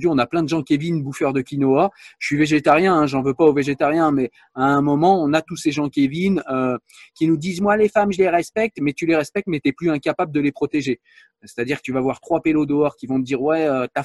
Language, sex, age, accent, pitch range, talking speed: French, male, 30-49, French, 130-175 Hz, 270 wpm